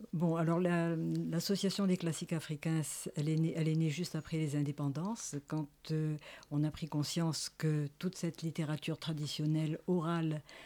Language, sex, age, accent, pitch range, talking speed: French, female, 60-79, French, 150-170 Hz, 165 wpm